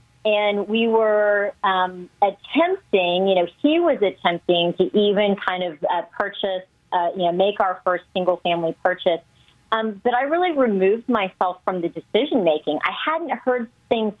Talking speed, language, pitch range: 155 wpm, English, 175-220 Hz